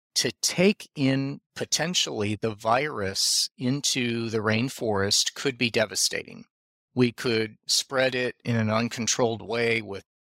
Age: 40-59